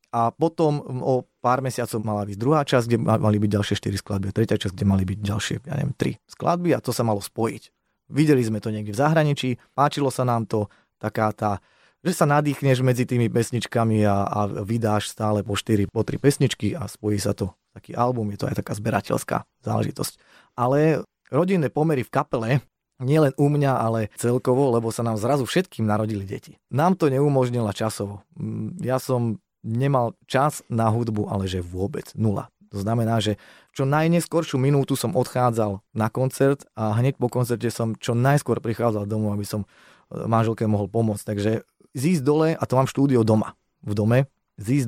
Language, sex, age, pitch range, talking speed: Slovak, male, 30-49, 105-140 Hz, 180 wpm